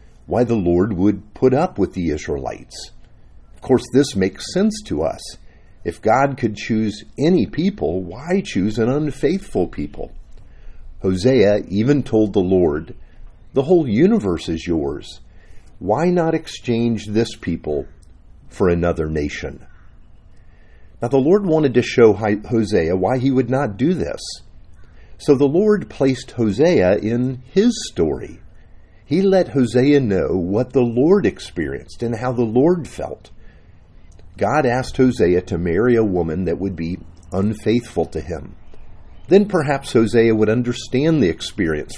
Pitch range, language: 90-130 Hz, English